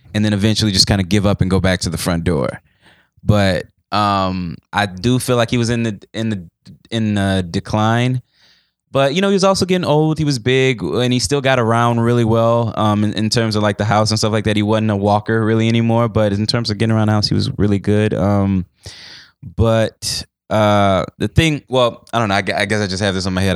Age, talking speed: 10-29, 245 wpm